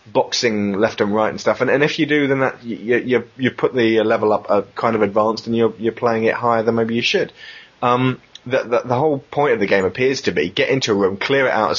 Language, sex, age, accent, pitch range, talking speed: English, male, 20-39, British, 105-130 Hz, 280 wpm